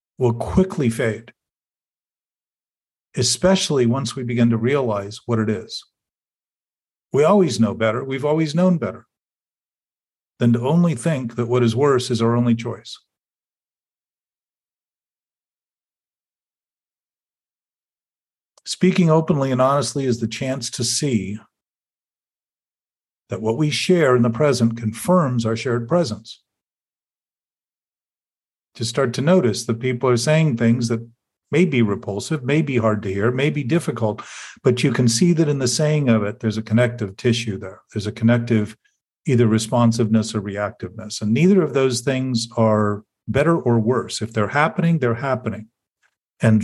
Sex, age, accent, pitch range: male, 50-69, American, 110-140 Hz